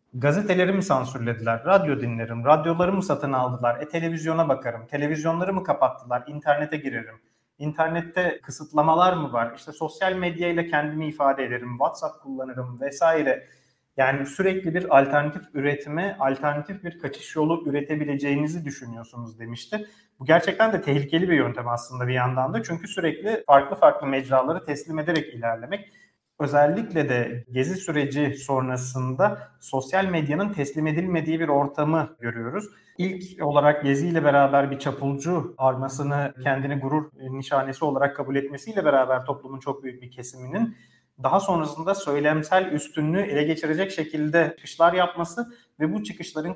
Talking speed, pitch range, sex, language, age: 130 wpm, 135-170 Hz, male, Turkish, 40-59